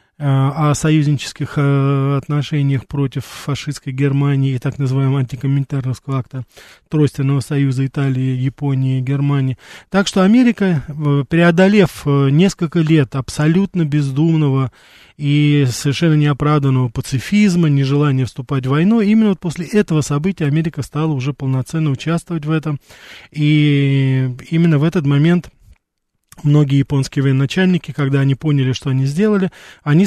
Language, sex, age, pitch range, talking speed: Russian, male, 20-39, 135-170 Hz, 120 wpm